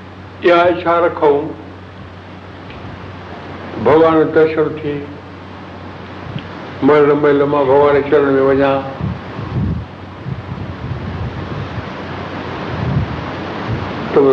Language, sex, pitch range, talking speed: Hindi, male, 100-160 Hz, 55 wpm